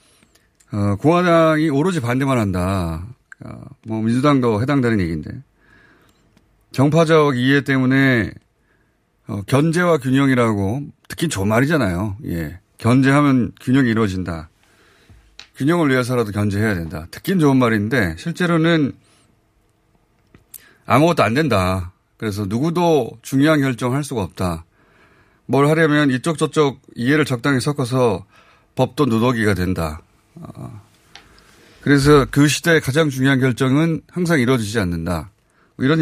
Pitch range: 105-145 Hz